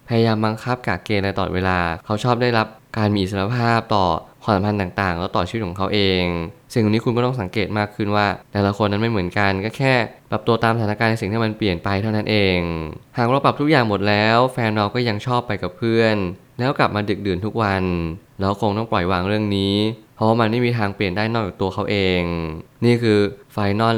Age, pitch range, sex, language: 20-39, 100-115 Hz, male, Thai